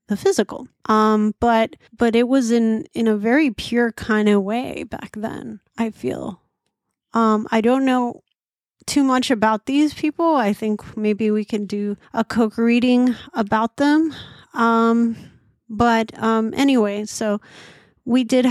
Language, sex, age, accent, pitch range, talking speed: English, female, 30-49, American, 210-245 Hz, 150 wpm